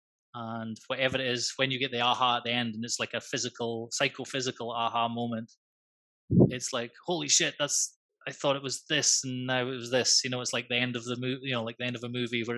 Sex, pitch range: male, 115-130 Hz